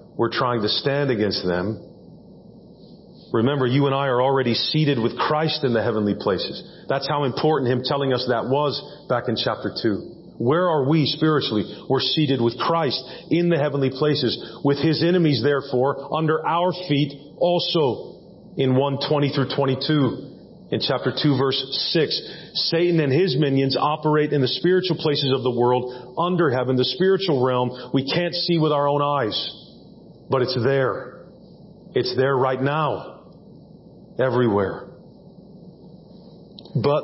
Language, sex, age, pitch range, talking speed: English, male, 40-59, 125-150 Hz, 150 wpm